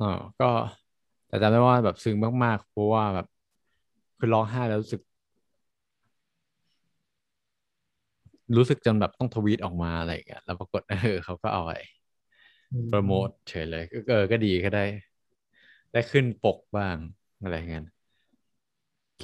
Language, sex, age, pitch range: Thai, male, 20-39, 95-120 Hz